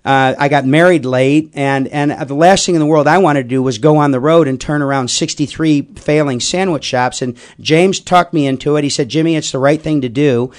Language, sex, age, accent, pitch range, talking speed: English, male, 40-59, American, 140-165 Hz, 250 wpm